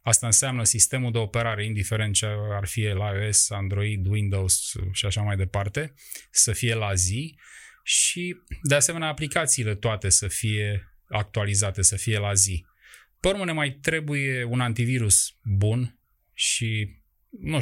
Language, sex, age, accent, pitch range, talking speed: Romanian, male, 20-39, native, 105-135 Hz, 140 wpm